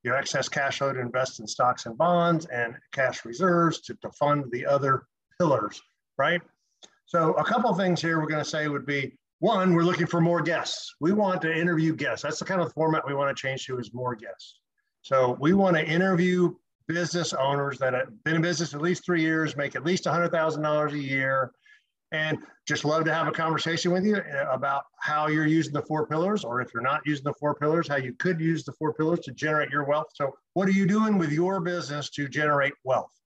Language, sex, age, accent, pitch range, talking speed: English, male, 50-69, American, 145-170 Hz, 225 wpm